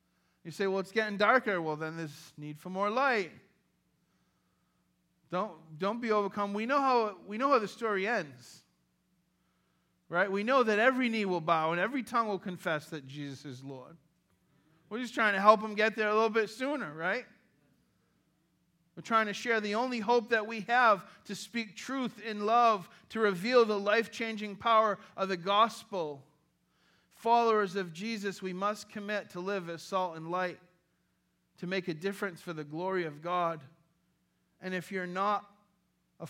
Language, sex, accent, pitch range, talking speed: English, male, American, 160-210 Hz, 175 wpm